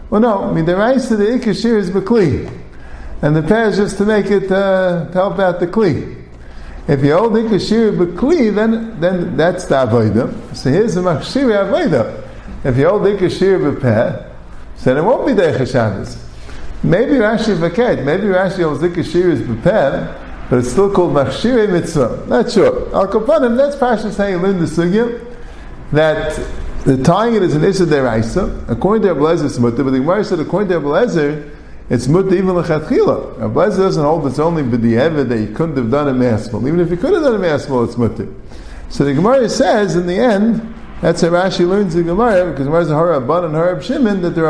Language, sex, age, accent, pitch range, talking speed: English, male, 50-69, American, 125-195 Hz, 195 wpm